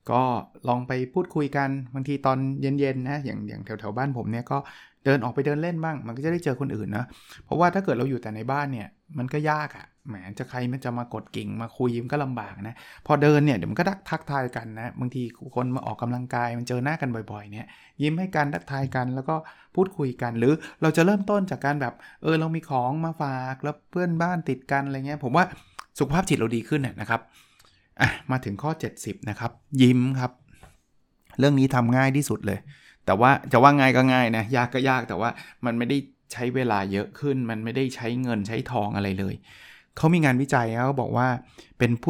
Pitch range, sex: 120-145 Hz, male